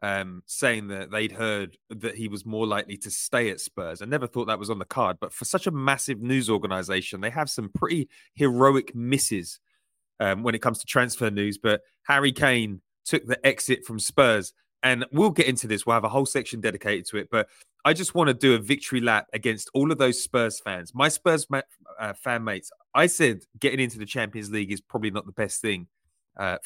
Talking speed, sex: 220 wpm, male